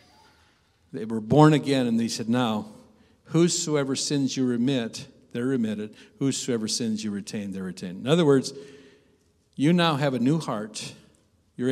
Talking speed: 155 wpm